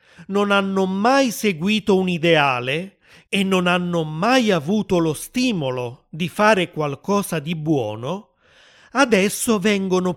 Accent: native